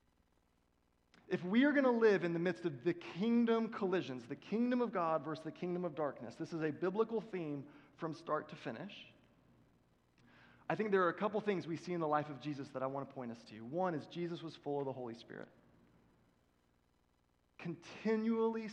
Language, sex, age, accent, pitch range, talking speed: English, male, 30-49, American, 130-200 Hz, 200 wpm